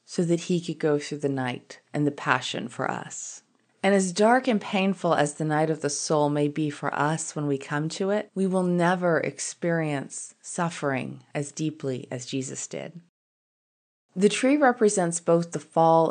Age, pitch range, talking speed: 30-49, 145-195 Hz, 185 wpm